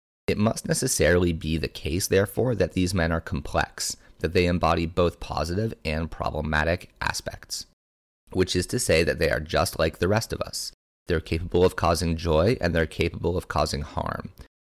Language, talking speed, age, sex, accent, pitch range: English, 180 wpm, 30-49, male, American, 80-95 Hz